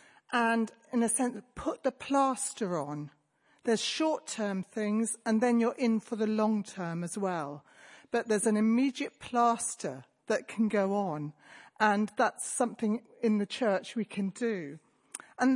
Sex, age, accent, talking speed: female, 40-59, British, 150 wpm